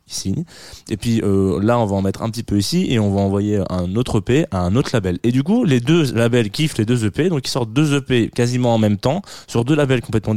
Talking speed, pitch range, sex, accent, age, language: 265 wpm, 105-140 Hz, male, French, 20-39, French